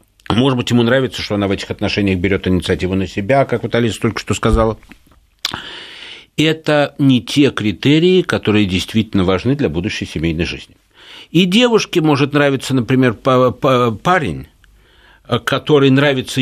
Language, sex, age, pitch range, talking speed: Russian, male, 60-79, 115-145 Hz, 140 wpm